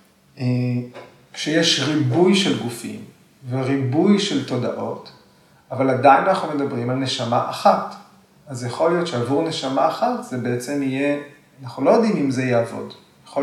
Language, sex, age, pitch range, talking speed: Hebrew, male, 30-49, 125-160 Hz, 135 wpm